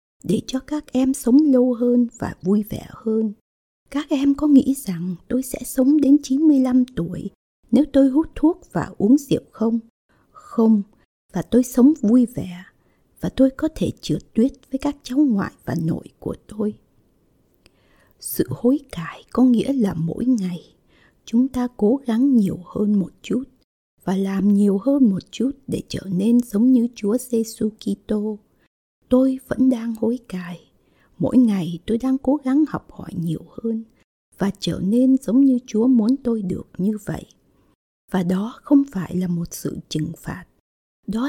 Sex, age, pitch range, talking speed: female, 60-79, 190-260 Hz, 170 wpm